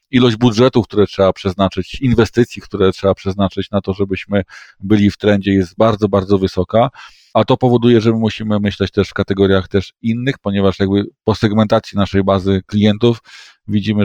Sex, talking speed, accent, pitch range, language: male, 165 wpm, native, 100-110 Hz, Polish